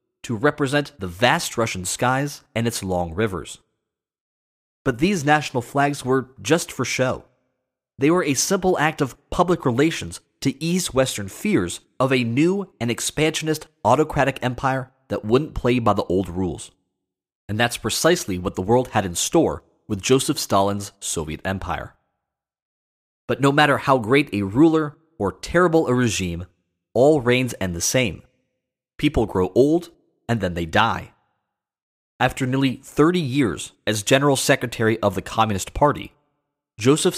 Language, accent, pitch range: English, American, 100-145 Hz